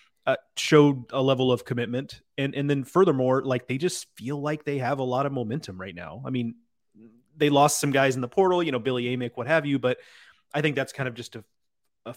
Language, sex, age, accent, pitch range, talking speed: English, male, 30-49, American, 115-140 Hz, 235 wpm